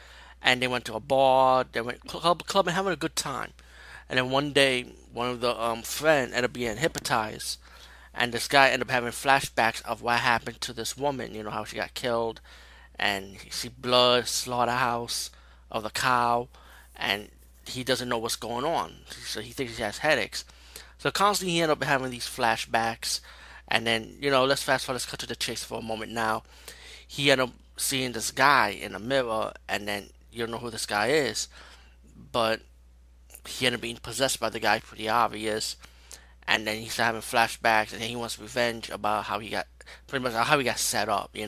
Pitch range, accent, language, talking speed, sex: 105-130 Hz, American, English, 205 wpm, male